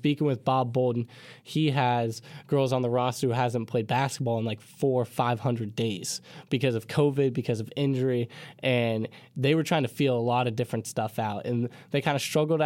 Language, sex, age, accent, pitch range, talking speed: English, male, 10-29, American, 120-150 Hz, 205 wpm